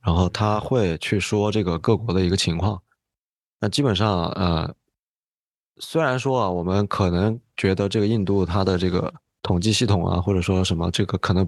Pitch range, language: 90-110 Hz, Chinese